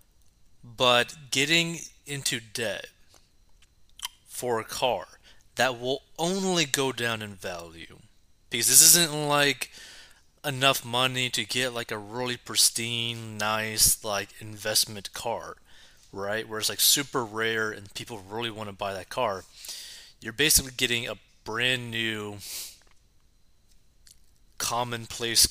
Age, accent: 30-49, American